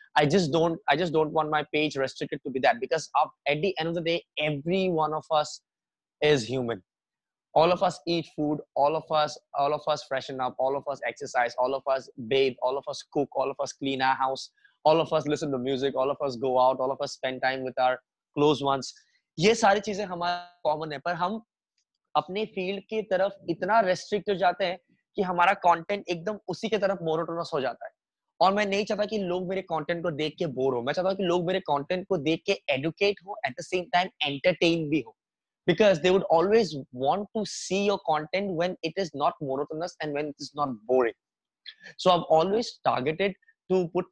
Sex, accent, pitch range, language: male, native, 145-185 Hz, Hindi